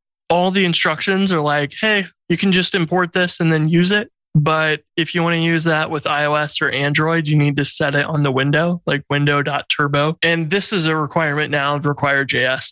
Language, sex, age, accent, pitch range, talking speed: English, male, 20-39, American, 145-170 Hz, 210 wpm